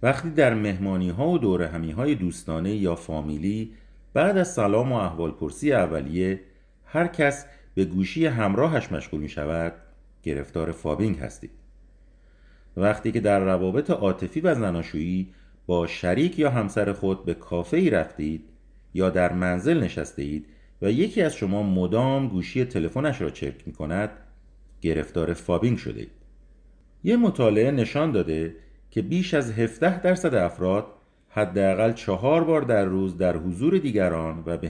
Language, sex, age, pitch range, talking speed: Persian, male, 50-69, 85-115 Hz, 140 wpm